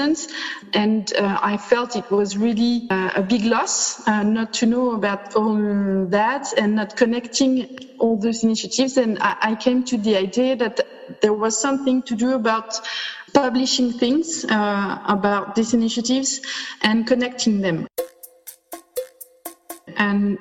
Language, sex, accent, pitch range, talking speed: English, female, French, 210-245 Hz, 140 wpm